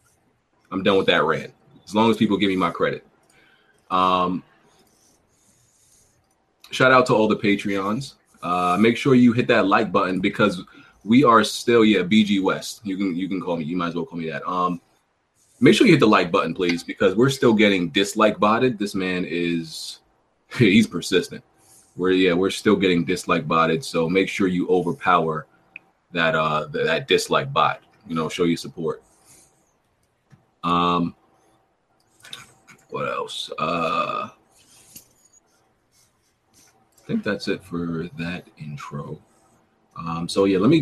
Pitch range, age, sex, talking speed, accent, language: 85-110 Hz, 20-39, male, 155 wpm, American, English